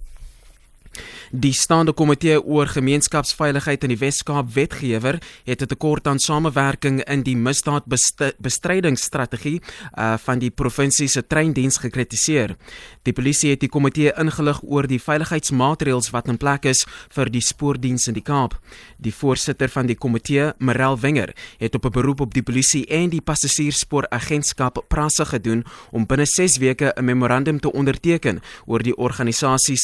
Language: English